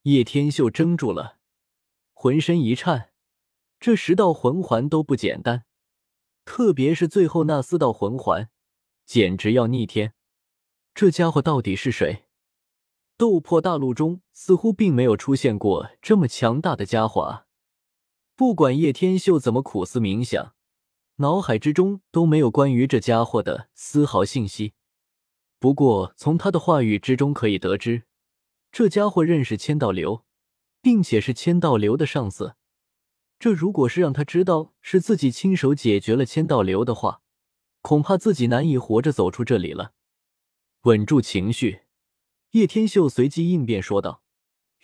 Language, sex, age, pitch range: Chinese, male, 20-39, 110-165 Hz